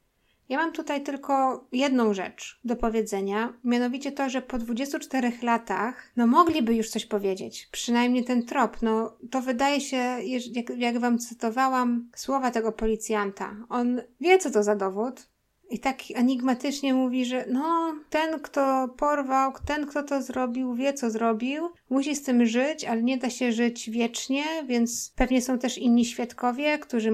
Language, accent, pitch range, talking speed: Polish, native, 220-265 Hz, 160 wpm